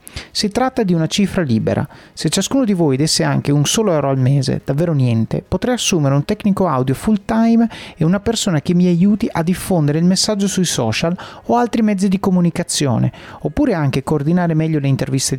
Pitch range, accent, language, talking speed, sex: 140-200 Hz, native, Italian, 190 wpm, male